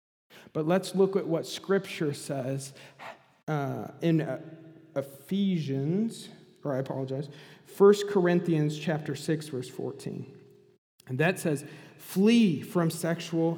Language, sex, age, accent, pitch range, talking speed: English, male, 40-59, American, 145-180 Hz, 115 wpm